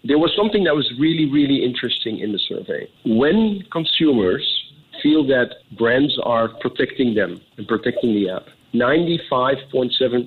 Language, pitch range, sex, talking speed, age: English, 110-150 Hz, male, 135 wpm, 50-69